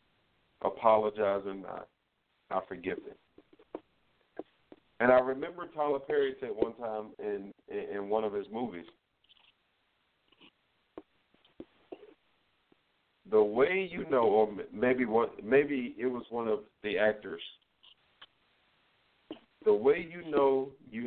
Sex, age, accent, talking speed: male, 50-69, American, 110 wpm